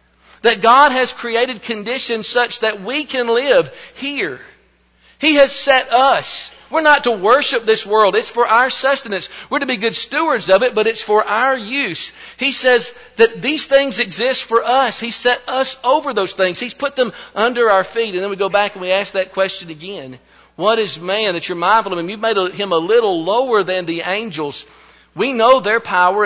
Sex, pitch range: male, 180-240 Hz